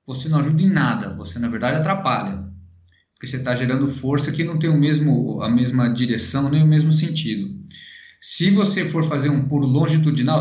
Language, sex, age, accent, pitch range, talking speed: Portuguese, male, 20-39, Brazilian, 135-195 Hz, 190 wpm